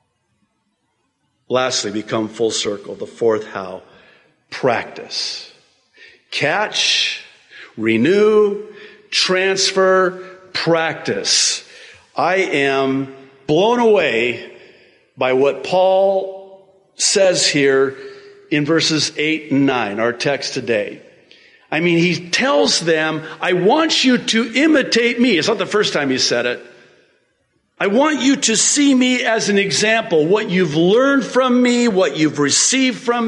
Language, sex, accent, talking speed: English, male, American, 120 wpm